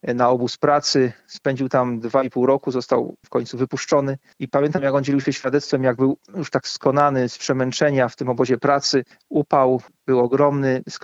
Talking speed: 185 wpm